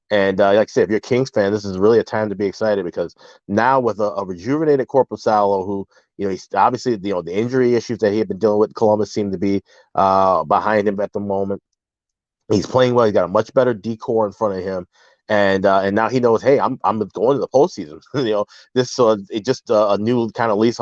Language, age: English, 30-49